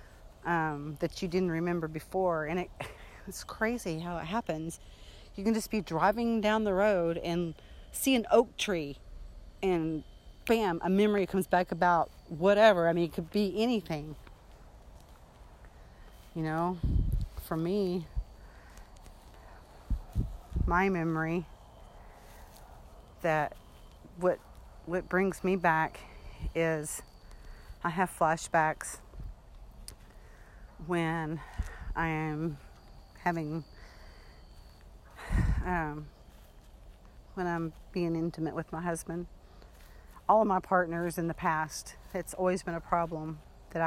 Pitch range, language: 145-180 Hz, English